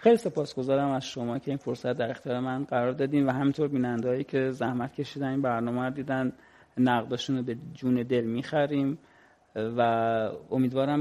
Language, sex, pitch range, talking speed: Persian, male, 125-145 Hz, 160 wpm